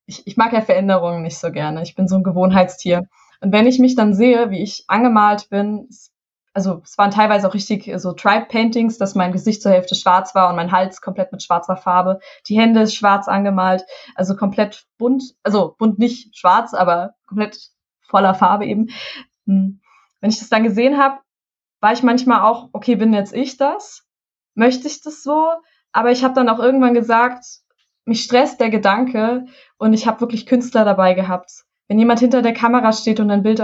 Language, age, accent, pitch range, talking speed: German, 20-39, German, 195-235 Hz, 190 wpm